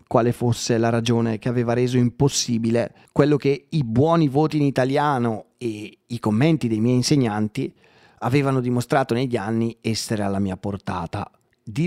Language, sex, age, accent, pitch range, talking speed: Italian, male, 30-49, native, 105-140 Hz, 150 wpm